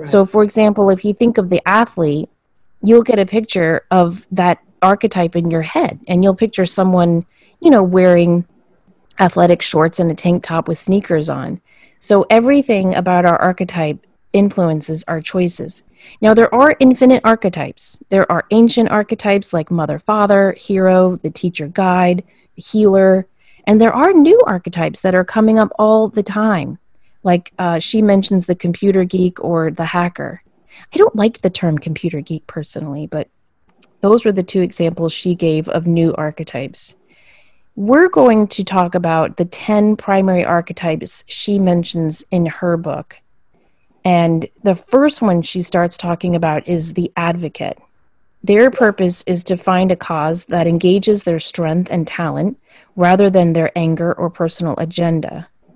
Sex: female